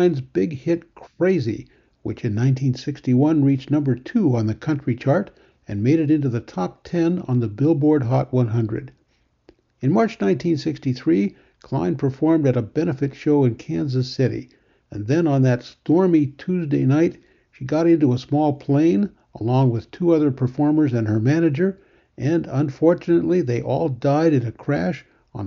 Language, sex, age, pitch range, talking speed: English, male, 60-79, 120-165 Hz, 160 wpm